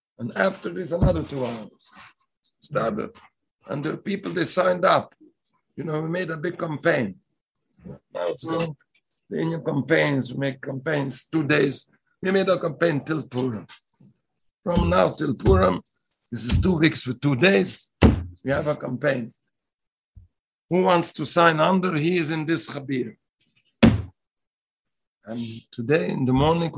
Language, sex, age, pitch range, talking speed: English, male, 60-79, 125-170 Hz, 145 wpm